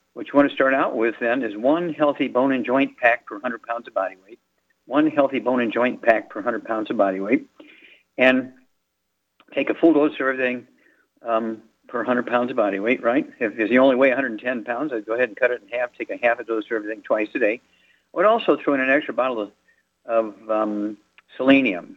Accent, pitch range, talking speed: American, 115-160 Hz, 225 wpm